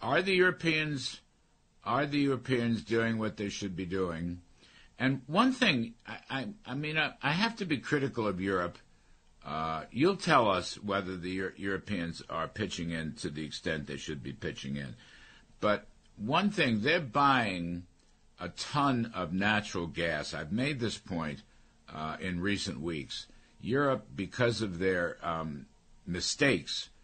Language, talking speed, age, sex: English, 155 wpm, 60-79, male